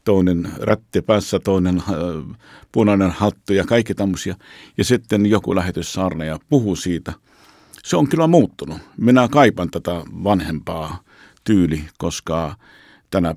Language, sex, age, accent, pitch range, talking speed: Finnish, male, 50-69, native, 90-110 Hz, 120 wpm